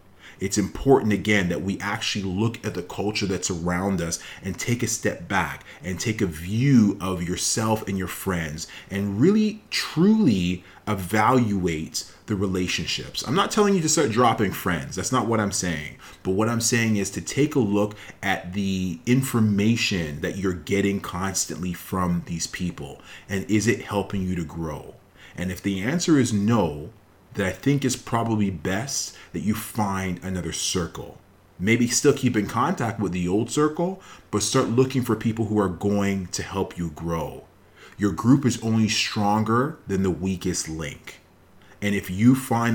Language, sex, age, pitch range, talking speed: English, male, 30-49, 90-115 Hz, 175 wpm